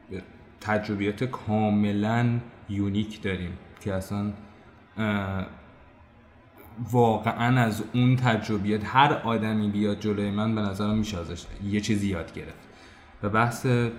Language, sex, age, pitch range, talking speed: Persian, male, 20-39, 105-130 Hz, 100 wpm